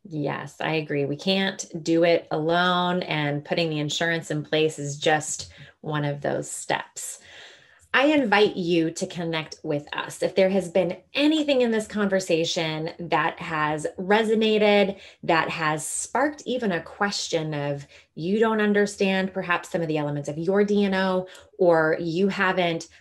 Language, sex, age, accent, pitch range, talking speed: English, female, 20-39, American, 160-200 Hz, 155 wpm